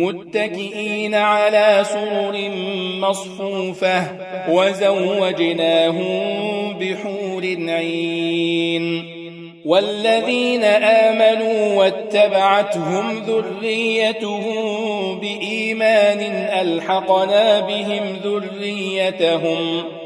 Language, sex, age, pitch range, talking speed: Arabic, male, 40-59, 175-210 Hz, 45 wpm